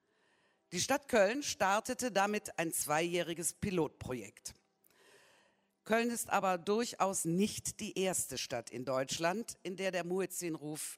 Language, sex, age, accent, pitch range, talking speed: German, female, 50-69, German, 150-220 Hz, 120 wpm